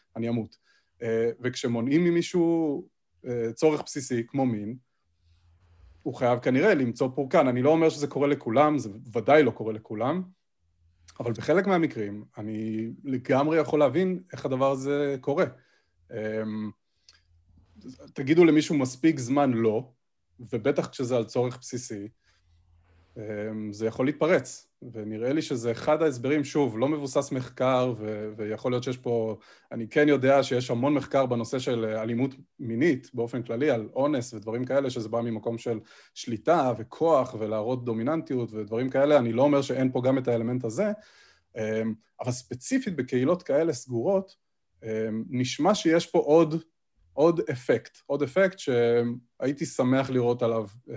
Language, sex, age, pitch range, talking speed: Hebrew, male, 30-49, 110-145 Hz, 140 wpm